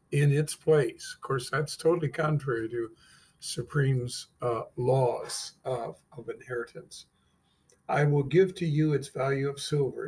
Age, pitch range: 50-69, 130-160 Hz